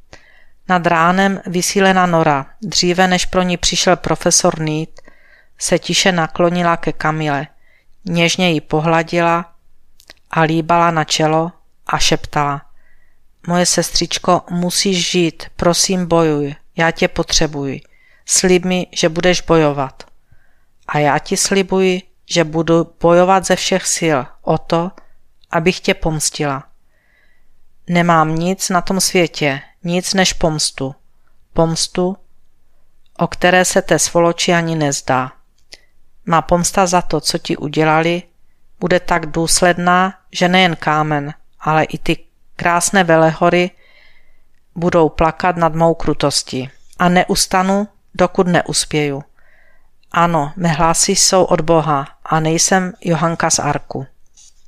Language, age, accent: Czech, 50-69, native